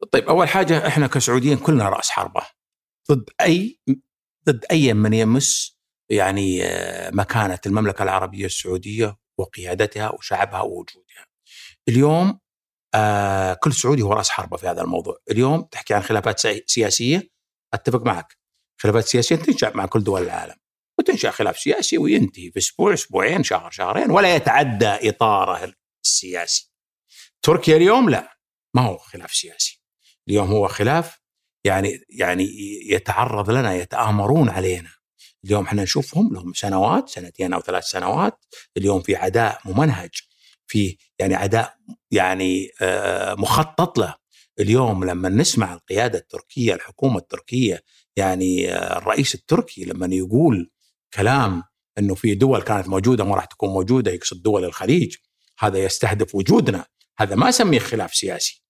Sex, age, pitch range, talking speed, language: male, 60-79, 95-145 Hz, 130 wpm, Arabic